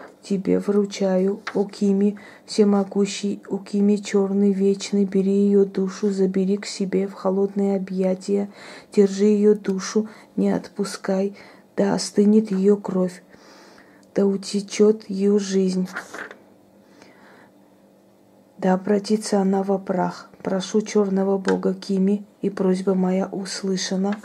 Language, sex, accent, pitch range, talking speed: Russian, female, native, 195-205 Hz, 105 wpm